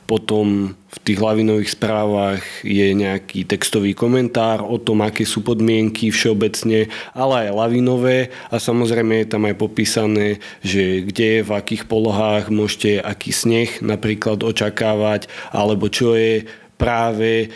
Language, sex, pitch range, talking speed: Slovak, male, 105-115 Hz, 130 wpm